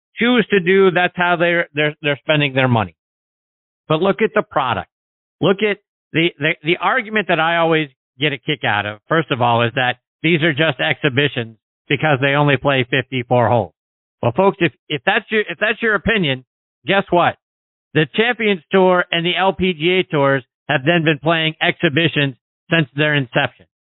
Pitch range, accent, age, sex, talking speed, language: 140-185 Hz, American, 50-69, male, 180 wpm, English